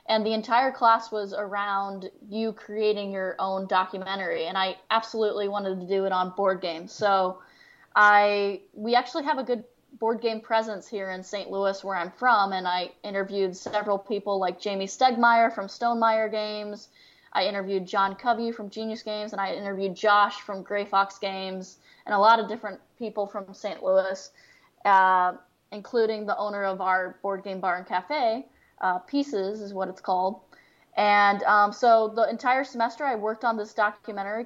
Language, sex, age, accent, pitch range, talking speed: English, female, 10-29, American, 195-225 Hz, 175 wpm